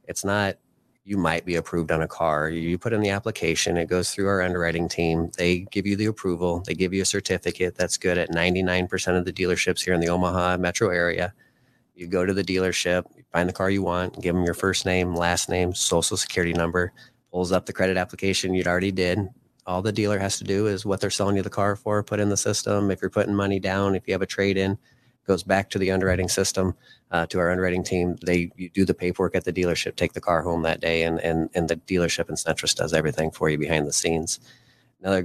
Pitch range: 85-100 Hz